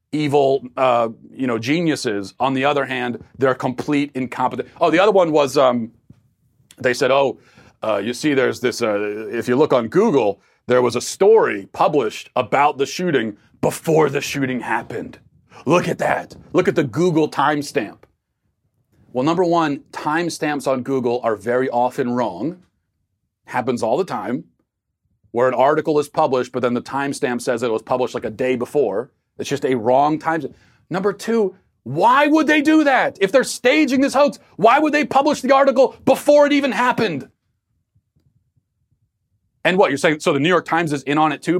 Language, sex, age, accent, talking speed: English, male, 40-59, American, 180 wpm